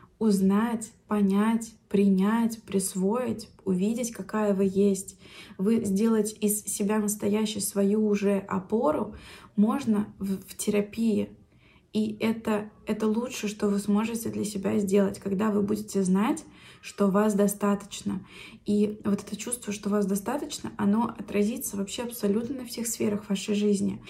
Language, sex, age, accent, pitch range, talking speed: Russian, female, 20-39, native, 195-215 Hz, 130 wpm